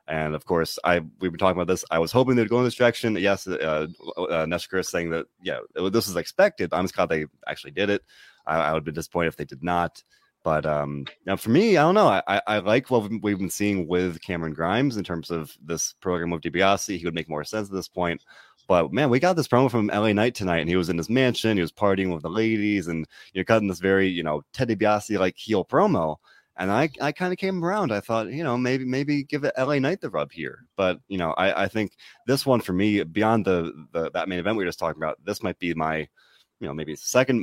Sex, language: male, English